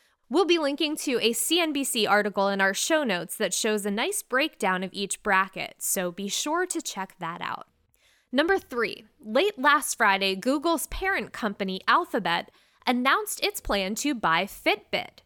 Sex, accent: female, American